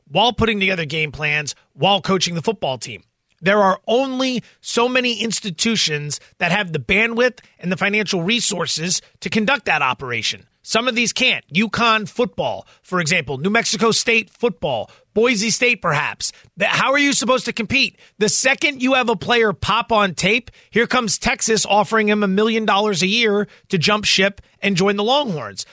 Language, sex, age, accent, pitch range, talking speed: English, male, 30-49, American, 195-240 Hz, 175 wpm